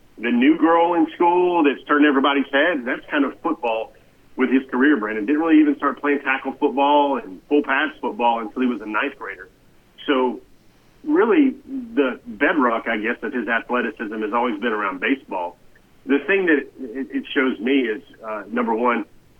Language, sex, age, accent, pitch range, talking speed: English, male, 40-59, American, 120-150 Hz, 180 wpm